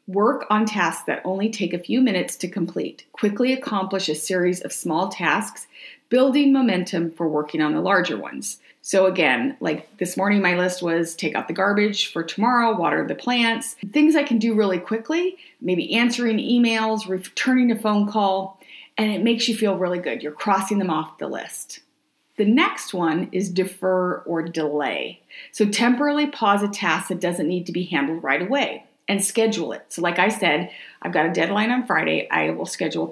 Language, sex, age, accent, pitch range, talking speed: English, female, 40-59, American, 180-230 Hz, 190 wpm